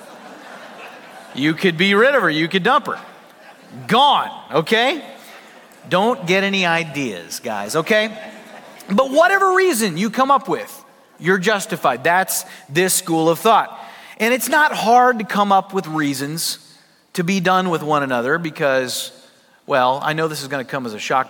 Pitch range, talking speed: 145-195 Hz, 165 wpm